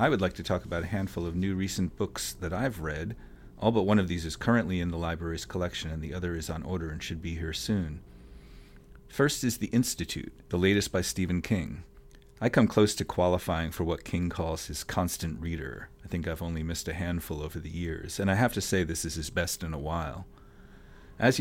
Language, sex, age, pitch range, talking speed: English, male, 40-59, 80-95 Hz, 225 wpm